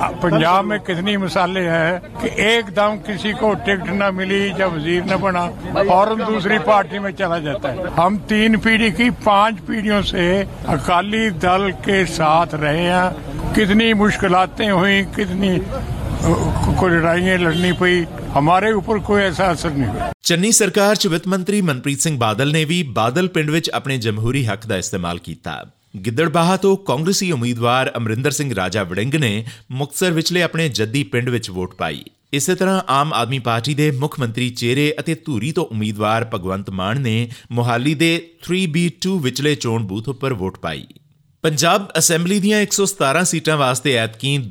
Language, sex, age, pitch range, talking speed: Punjabi, male, 60-79, 120-190 Hz, 160 wpm